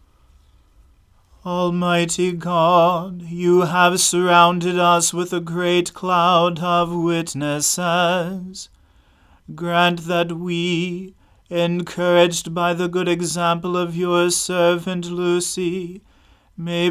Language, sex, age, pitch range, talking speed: English, male, 30-49, 170-175 Hz, 90 wpm